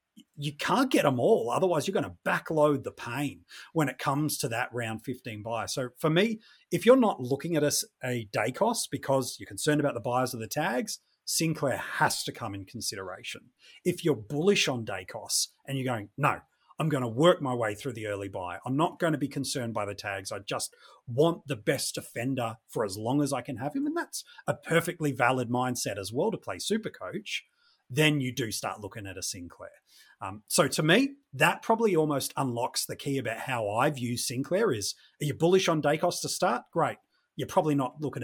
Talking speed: 215 wpm